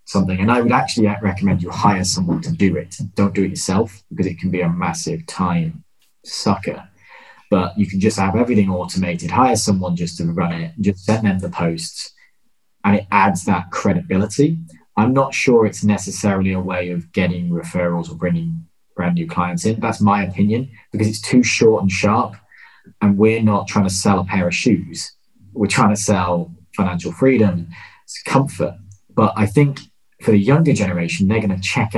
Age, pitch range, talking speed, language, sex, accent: 20-39, 90-110 Hz, 190 wpm, English, male, British